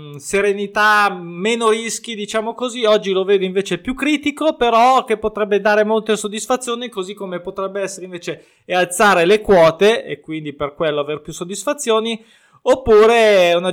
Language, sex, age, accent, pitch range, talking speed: Italian, male, 20-39, native, 165-220 Hz, 155 wpm